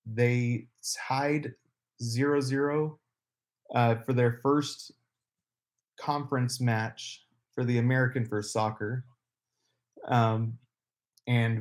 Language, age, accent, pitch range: English, 30-49, American, 115-130 Hz